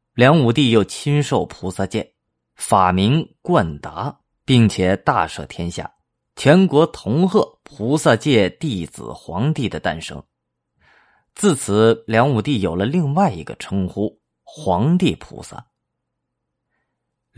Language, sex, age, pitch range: Chinese, male, 20-39, 95-140 Hz